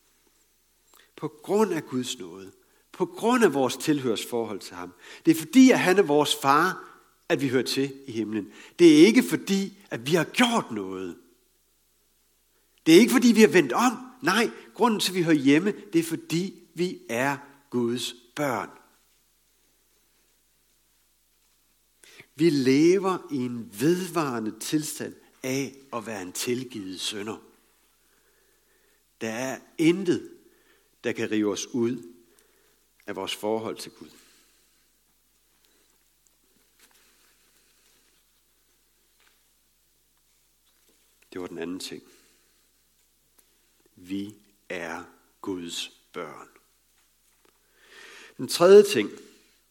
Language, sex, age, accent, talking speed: Danish, male, 60-79, native, 115 wpm